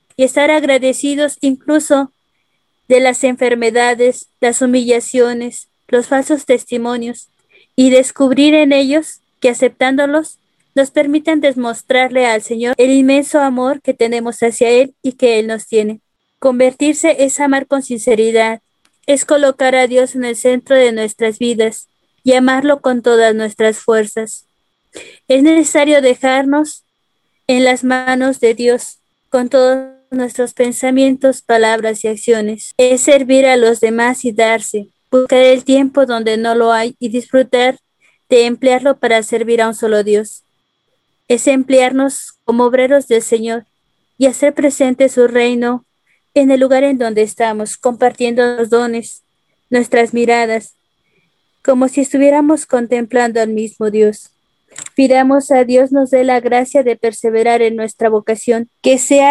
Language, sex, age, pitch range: Spanish, female, 20-39, 235-270 Hz